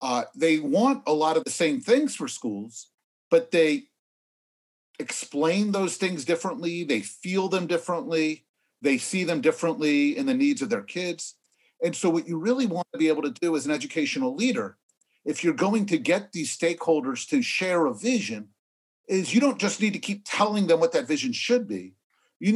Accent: American